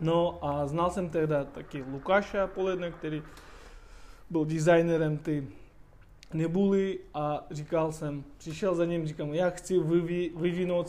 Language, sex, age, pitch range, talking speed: Czech, male, 20-39, 150-180 Hz, 125 wpm